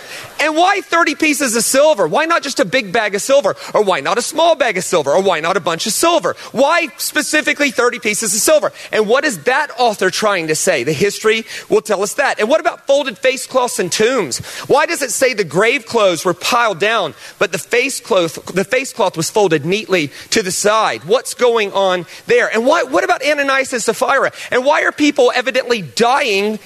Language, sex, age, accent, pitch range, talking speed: English, male, 30-49, American, 215-275 Hz, 210 wpm